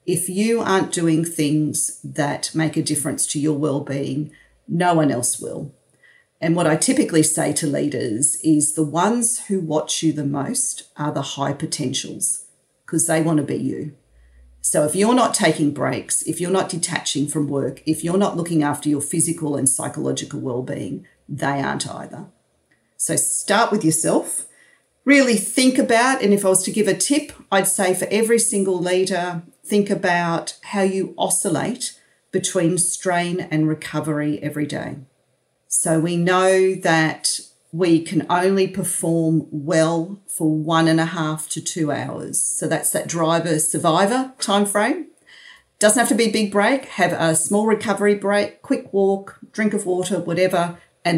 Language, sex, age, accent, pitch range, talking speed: English, female, 40-59, Australian, 155-195 Hz, 165 wpm